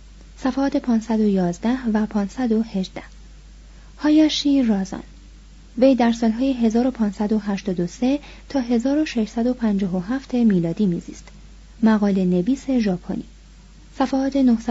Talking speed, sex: 75 wpm, female